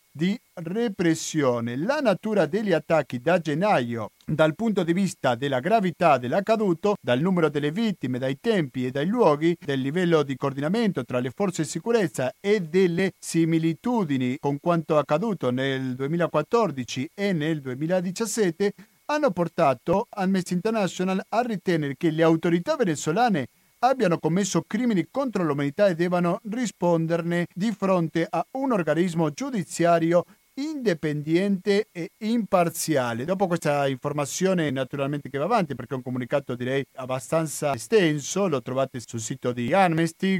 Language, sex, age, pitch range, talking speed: Italian, male, 50-69, 135-190 Hz, 135 wpm